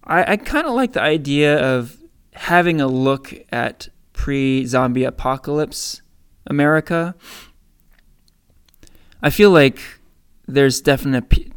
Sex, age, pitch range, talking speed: male, 20-39, 125-155 Hz, 100 wpm